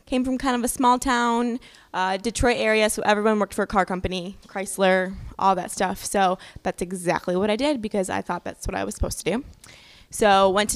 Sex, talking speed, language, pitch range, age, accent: female, 225 wpm, English, 190-245 Hz, 10-29, American